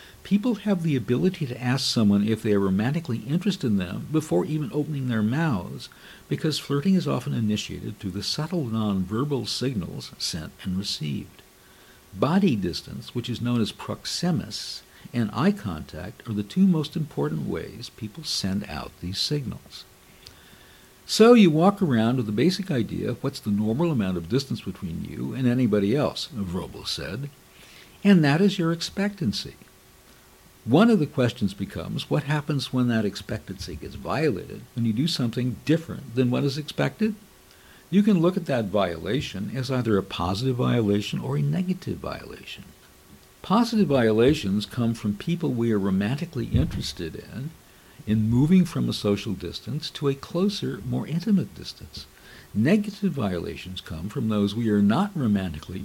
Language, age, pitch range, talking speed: English, 60-79, 100-155 Hz, 160 wpm